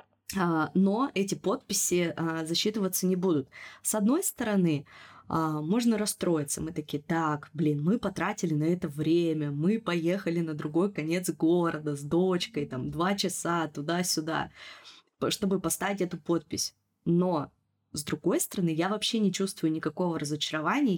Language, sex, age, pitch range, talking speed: Russian, female, 20-39, 155-185 Hz, 130 wpm